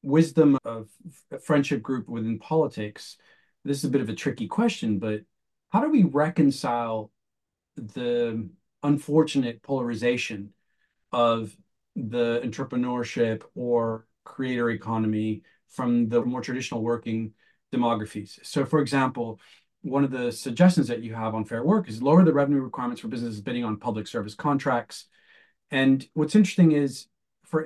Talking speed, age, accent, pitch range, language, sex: 140 wpm, 40-59, American, 115-155 Hz, English, male